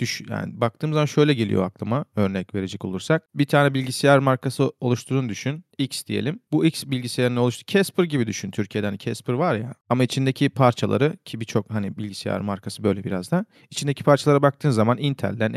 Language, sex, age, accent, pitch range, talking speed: Turkish, male, 40-59, native, 105-145 Hz, 175 wpm